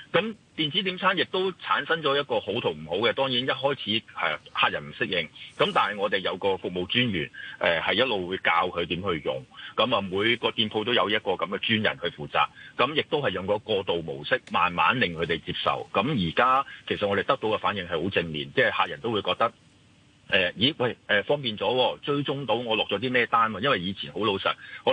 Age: 30-49